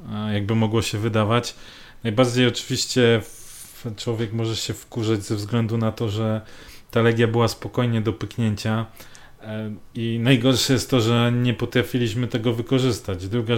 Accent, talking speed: native, 135 wpm